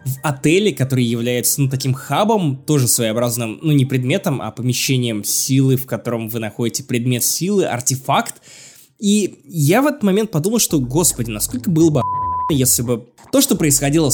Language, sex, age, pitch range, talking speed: Russian, male, 20-39, 125-180 Hz, 160 wpm